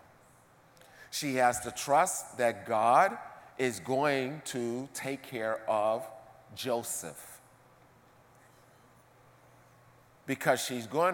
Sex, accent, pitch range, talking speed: male, American, 120-155 Hz, 85 wpm